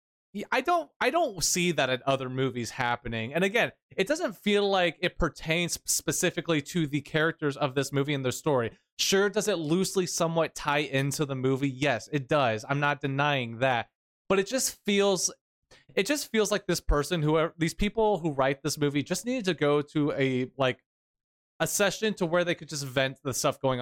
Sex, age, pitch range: male, 20-39, 135-185 Hz